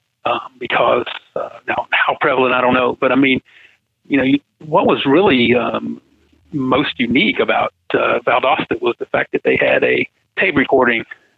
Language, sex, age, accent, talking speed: English, male, 50-69, American, 175 wpm